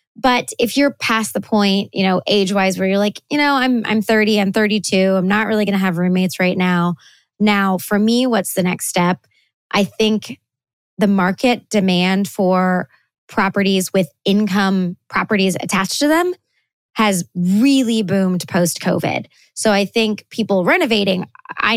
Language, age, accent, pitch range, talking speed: English, 20-39, American, 180-210 Hz, 160 wpm